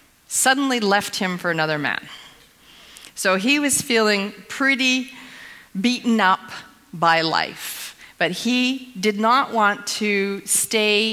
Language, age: English, 50-69